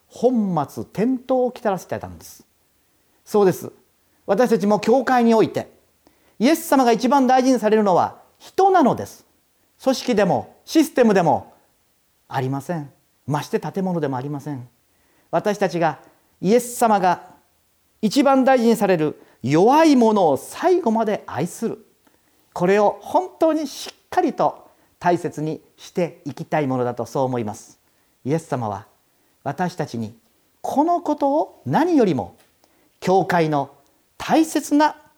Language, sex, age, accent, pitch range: Japanese, male, 40-59, native, 145-235 Hz